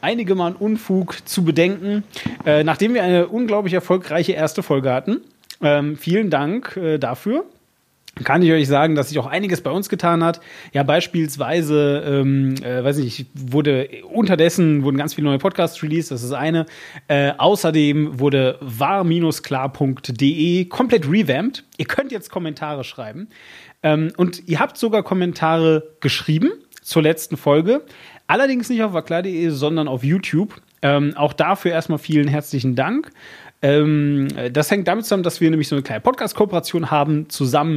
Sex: male